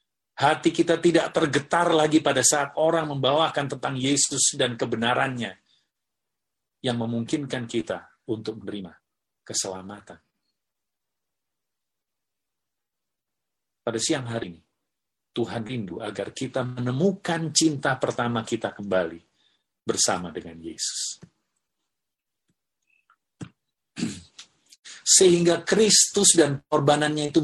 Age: 50-69